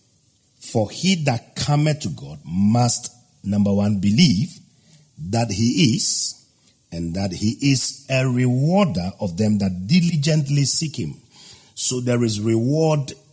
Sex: male